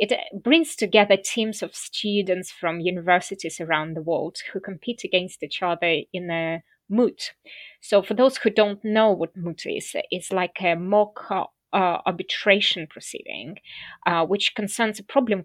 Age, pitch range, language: 20-39, 180-225 Hz, English